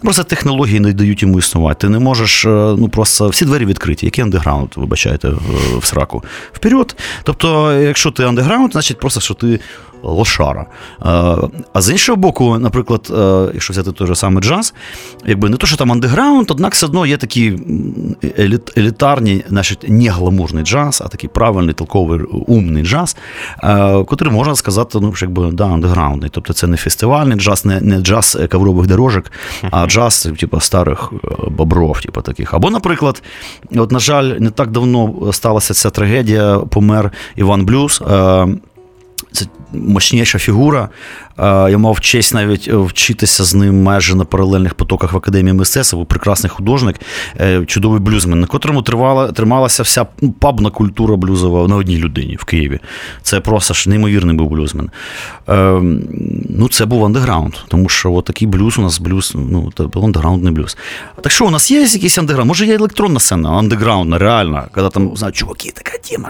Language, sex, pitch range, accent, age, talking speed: Ukrainian, male, 90-120 Hz, native, 30-49, 160 wpm